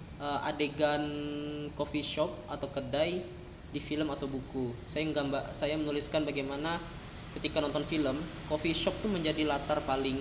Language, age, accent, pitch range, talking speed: Indonesian, 20-39, native, 135-150 Hz, 135 wpm